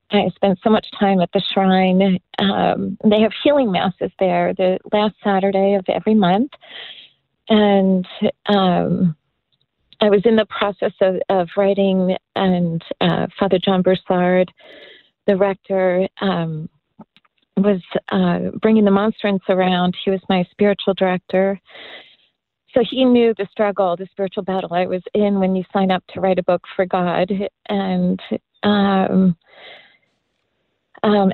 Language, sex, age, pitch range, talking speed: English, female, 40-59, 185-210 Hz, 140 wpm